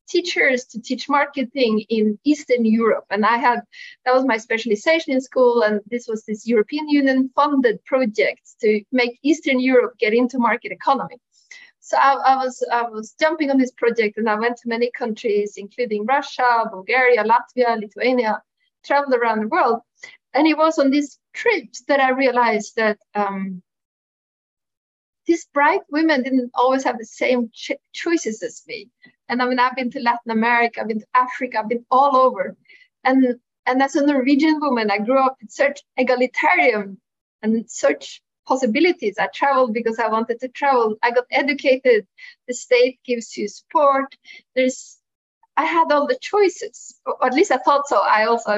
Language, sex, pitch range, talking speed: English, female, 225-285 Hz, 170 wpm